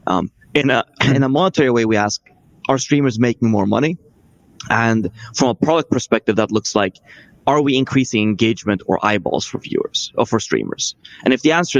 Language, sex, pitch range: English, male, 105-125 Hz